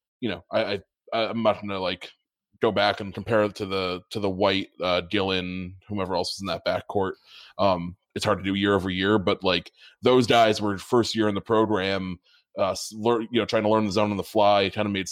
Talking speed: 240 wpm